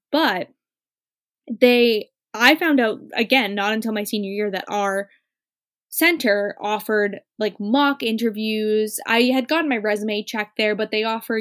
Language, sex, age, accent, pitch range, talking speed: English, female, 10-29, American, 200-235 Hz, 145 wpm